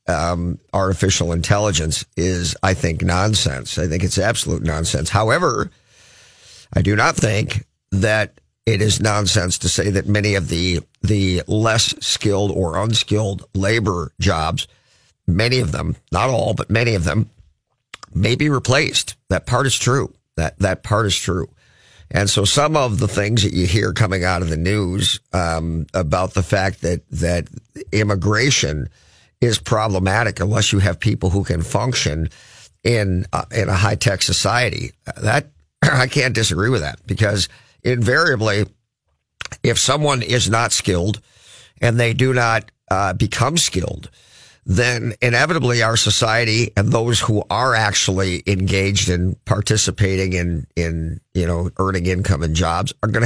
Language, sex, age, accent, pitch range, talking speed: English, male, 50-69, American, 95-115 Hz, 150 wpm